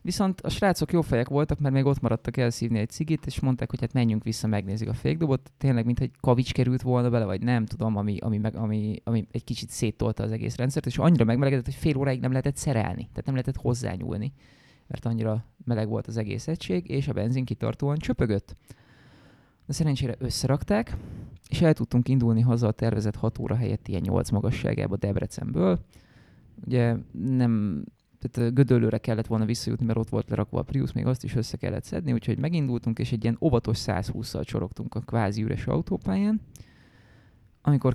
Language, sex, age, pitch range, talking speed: English, male, 20-39, 110-135 Hz, 175 wpm